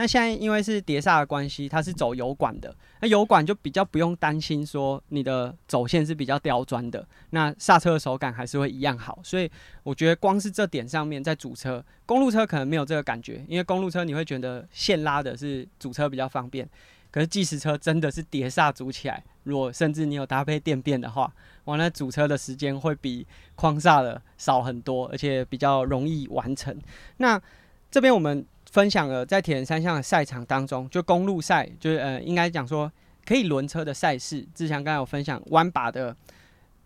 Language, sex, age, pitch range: Chinese, male, 20-39, 135-165 Hz